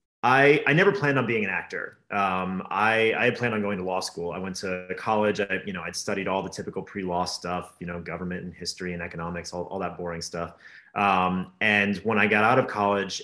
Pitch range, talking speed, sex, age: 90-120 Hz, 230 wpm, male, 30-49